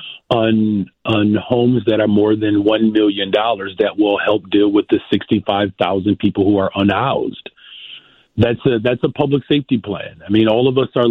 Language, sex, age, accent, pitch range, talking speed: English, male, 40-59, American, 105-120 Hz, 180 wpm